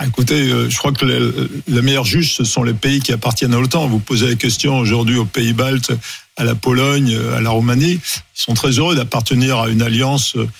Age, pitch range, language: 50-69, 115-145 Hz, French